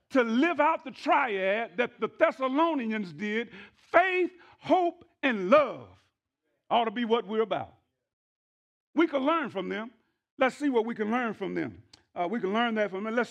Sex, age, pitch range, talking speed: male, 50-69, 190-250 Hz, 180 wpm